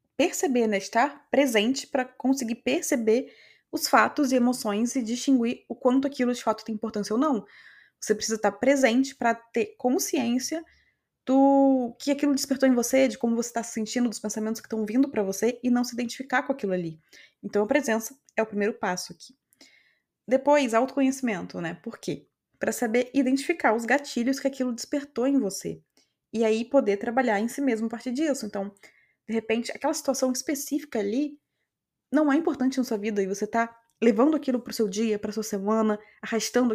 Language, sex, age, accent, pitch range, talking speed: Portuguese, female, 20-39, Brazilian, 215-265 Hz, 185 wpm